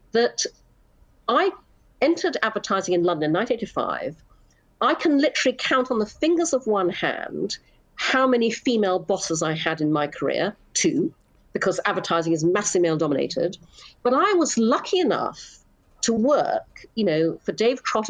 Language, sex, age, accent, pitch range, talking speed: English, female, 50-69, British, 170-260 Hz, 155 wpm